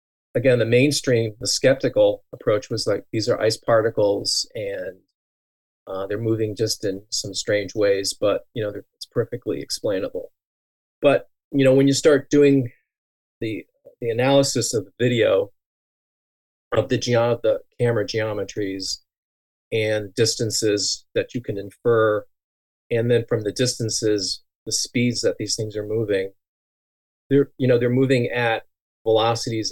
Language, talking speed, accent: English, 145 wpm, American